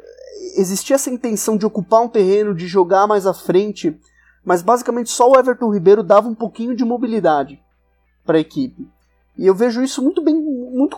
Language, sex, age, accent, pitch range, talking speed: Portuguese, male, 20-39, Brazilian, 175-230 Hz, 180 wpm